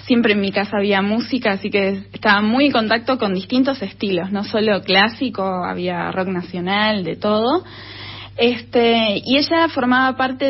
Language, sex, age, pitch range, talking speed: Spanish, female, 20-39, 200-255 Hz, 160 wpm